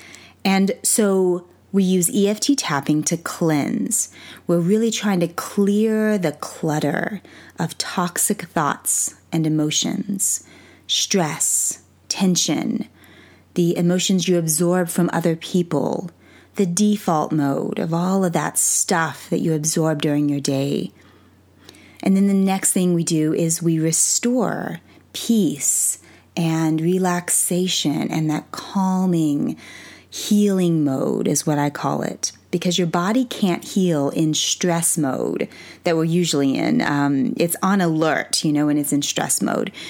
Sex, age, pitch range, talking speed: female, 30-49, 155-195 Hz, 135 wpm